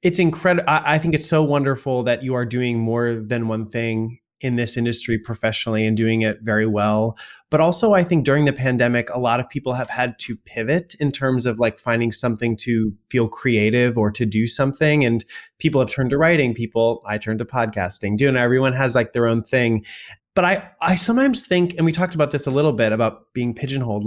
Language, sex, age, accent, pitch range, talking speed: English, male, 20-39, American, 110-140 Hz, 215 wpm